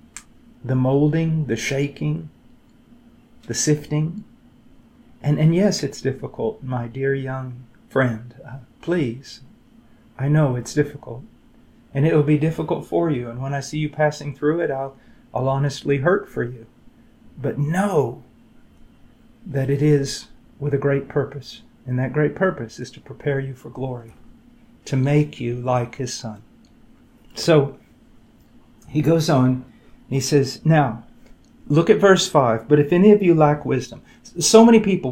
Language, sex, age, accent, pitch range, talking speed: English, male, 40-59, American, 130-155 Hz, 150 wpm